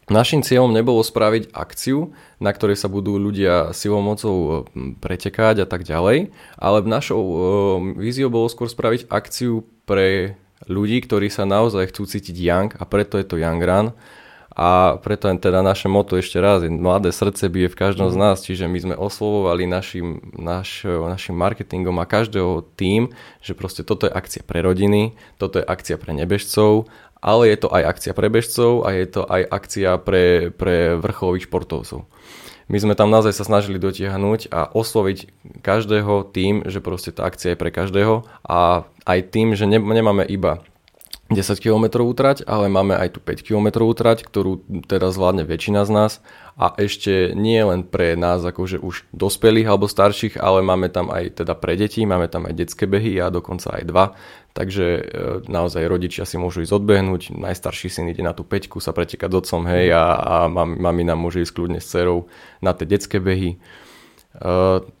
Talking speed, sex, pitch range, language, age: 180 wpm, male, 90-105 Hz, Slovak, 20-39